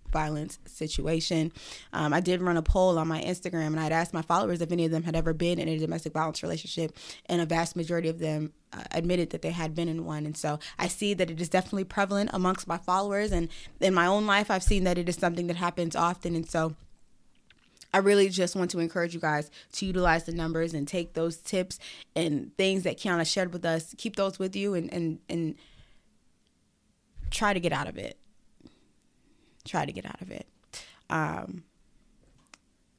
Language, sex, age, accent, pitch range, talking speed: English, female, 20-39, American, 160-185 Hz, 205 wpm